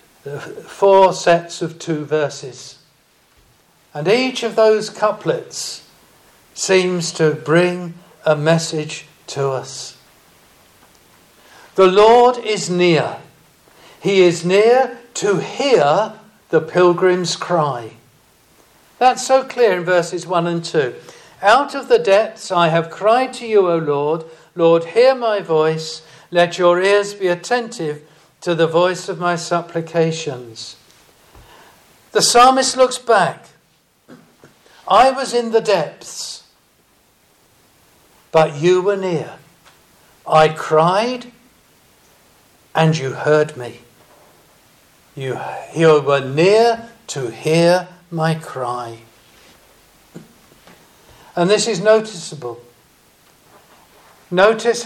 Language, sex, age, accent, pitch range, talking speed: English, male, 60-79, British, 160-215 Hz, 105 wpm